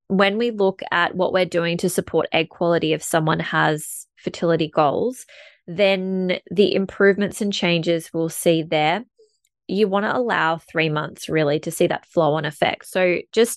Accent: Australian